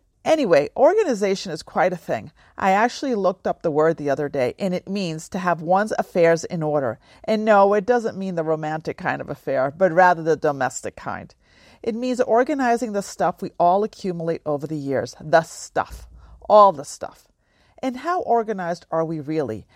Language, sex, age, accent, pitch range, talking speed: English, female, 40-59, American, 155-205 Hz, 185 wpm